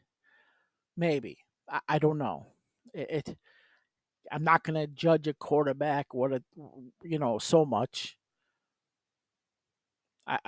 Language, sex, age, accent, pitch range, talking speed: English, male, 50-69, American, 135-180 Hz, 120 wpm